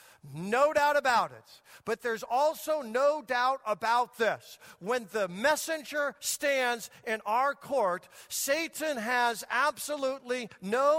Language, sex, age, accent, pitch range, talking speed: English, male, 50-69, American, 225-290 Hz, 120 wpm